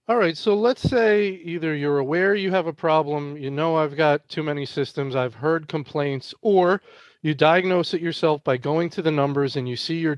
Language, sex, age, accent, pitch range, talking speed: English, male, 40-59, American, 140-185 Hz, 210 wpm